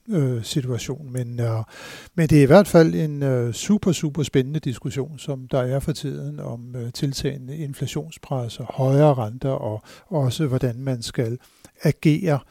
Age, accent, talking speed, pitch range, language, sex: 60-79, native, 155 wpm, 130-155 Hz, Danish, male